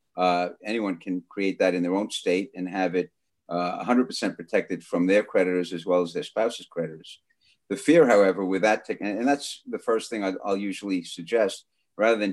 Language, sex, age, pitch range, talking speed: English, male, 50-69, 90-105 Hz, 200 wpm